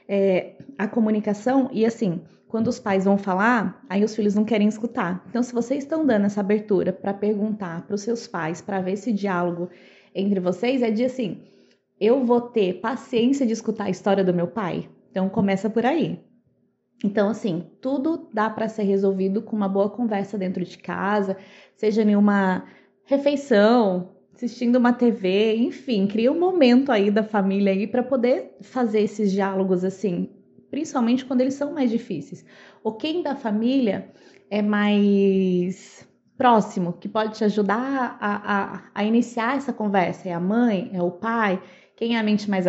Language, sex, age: Portuguese, female, 20-39